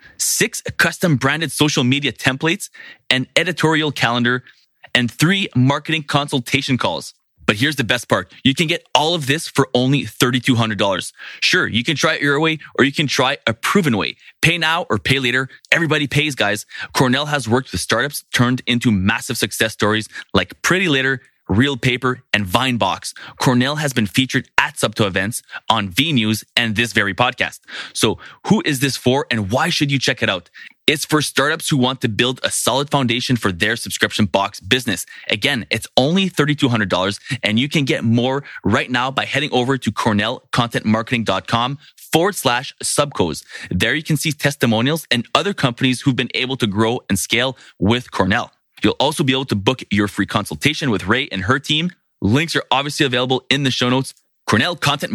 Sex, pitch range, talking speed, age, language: male, 115-145 Hz, 185 wpm, 20-39, English